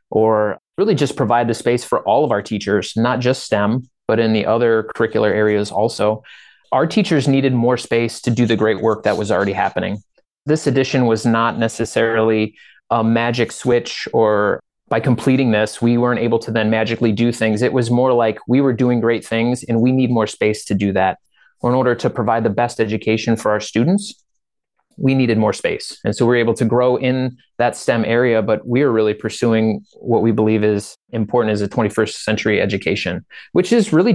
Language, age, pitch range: English, 30-49, 110-125 Hz